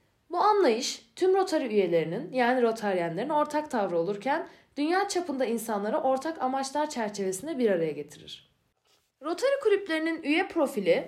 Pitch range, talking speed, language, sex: 205-320 Hz, 125 wpm, Turkish, female